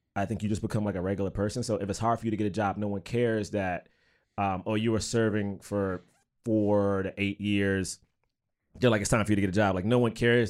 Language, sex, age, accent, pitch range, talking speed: English, male, 30-49, American, 105-150 Hz, 275 wpm